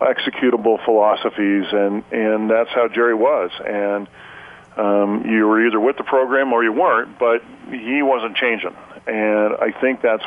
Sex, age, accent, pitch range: female, 40-59, American, 105-115 Hz